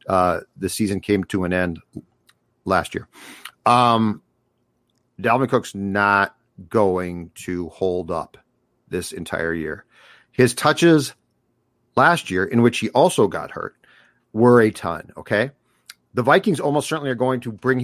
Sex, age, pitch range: male, 50-69, 105-135 Hz